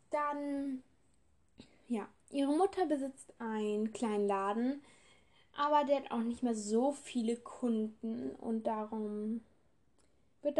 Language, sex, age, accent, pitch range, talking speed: German, female, 10-29, German, 225-295 Hz, 115 wpm